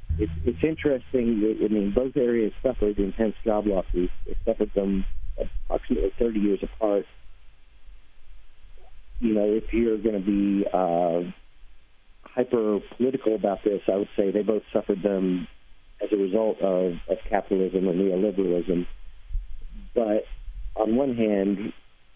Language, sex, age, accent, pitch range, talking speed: English, male, 50-69, American, 85-105 Hz, 130 wpm